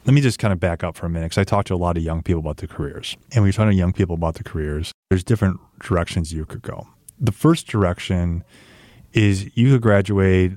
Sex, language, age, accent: male, English, 30-49, American